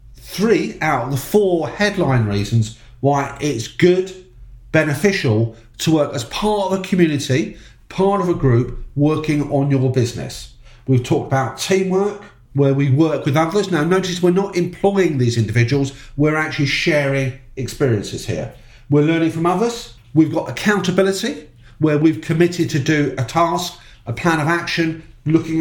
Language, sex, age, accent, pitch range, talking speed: English, male, 40-59, British, 125-165 Hz, 155 wpm